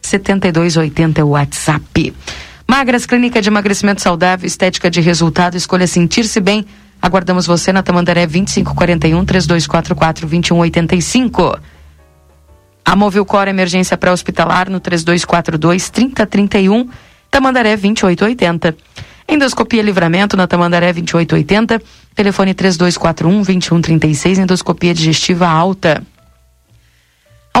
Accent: Brazilian